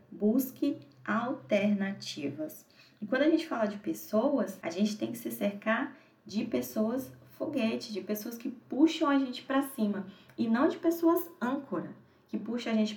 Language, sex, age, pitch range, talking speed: Portuguese, female, 10-29, 210-275 Hz, 160 wpm